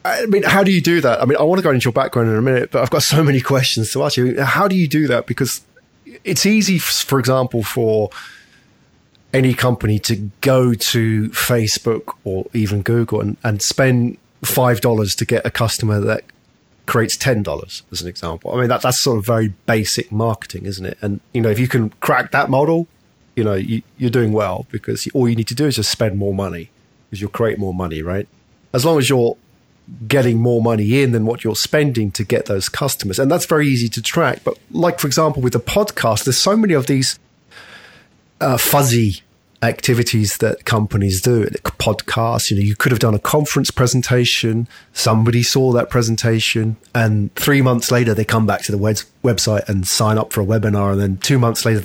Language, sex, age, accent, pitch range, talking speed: English, male, 30-49, British, 110-130 Hz, 210 wpm